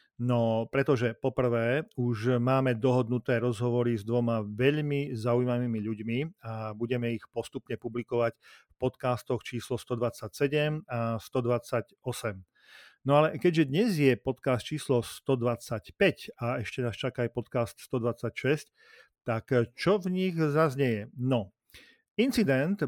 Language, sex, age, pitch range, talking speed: Slovak, male, 40-59, 115-135 Hz, 120 wpm